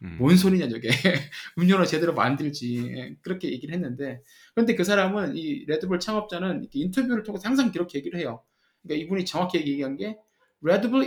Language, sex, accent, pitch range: Korean, male, native, 150-220 Hz